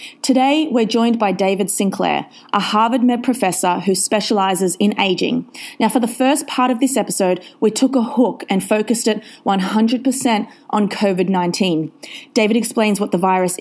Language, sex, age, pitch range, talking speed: English, female, 30-49, 190-235 Hz, 165 wpm